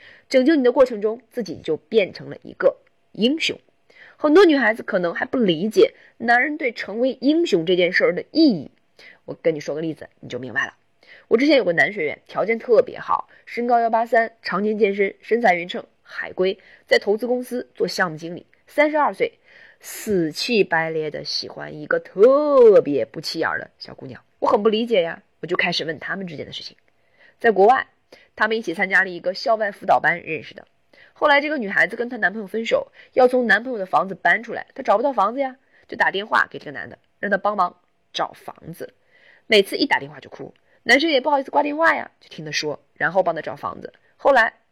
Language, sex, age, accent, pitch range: Chinese, female, 20-39, native, 195-290 Hz